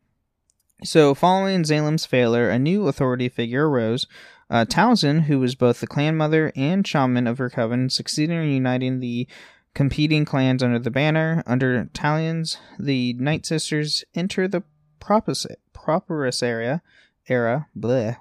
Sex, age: male, 20-39